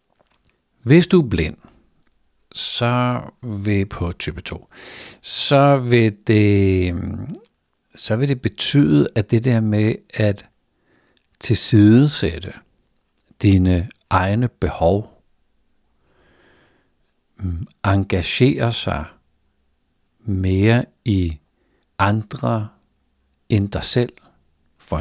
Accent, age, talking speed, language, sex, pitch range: native, 60-79, 75 wpm, Danish, male, 90-115 Hz